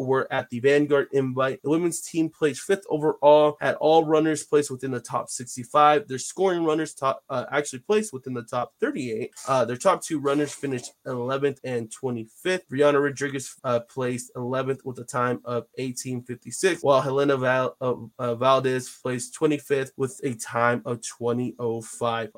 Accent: American